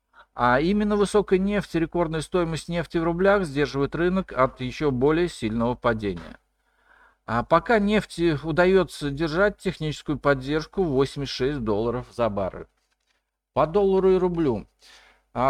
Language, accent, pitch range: Russian, native, 120-180 Hz